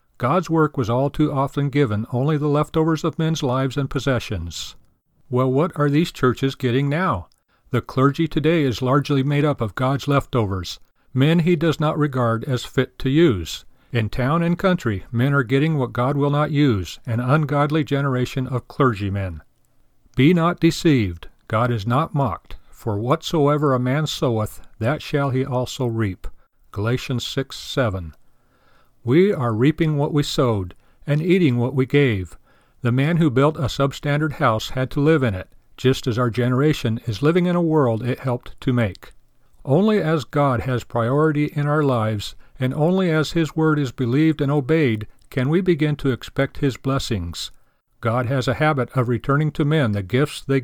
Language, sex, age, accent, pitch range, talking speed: English, male, 50-69, American, 120-150 Hz, 175 wpm